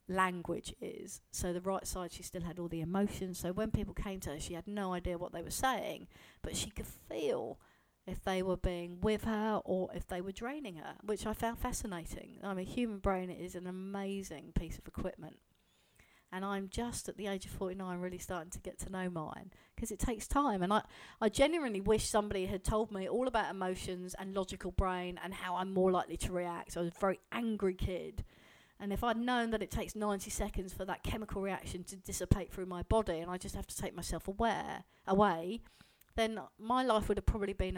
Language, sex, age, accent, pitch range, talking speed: English, female, 40-59, British, 180-220 Hz, 220 wpm